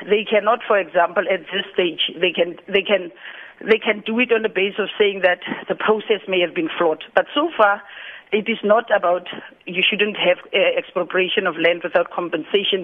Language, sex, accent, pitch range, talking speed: English, female, South African, 180-220 Hz, 195 wpm